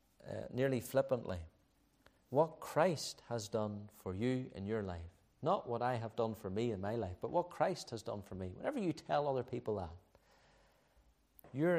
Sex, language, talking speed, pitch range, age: male, English, 185 wpm, 105-125 Hz, 50-69